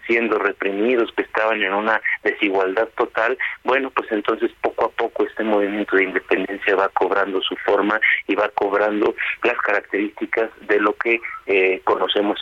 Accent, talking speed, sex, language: Mexican, 155 wpm, male, Spanish